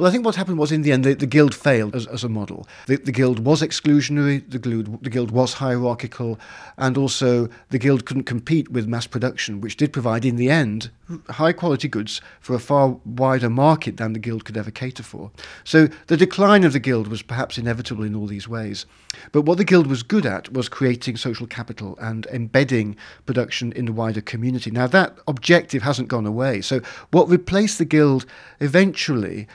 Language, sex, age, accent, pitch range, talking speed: English, male, 50-69, British, 115-140 Hz, 205 wpm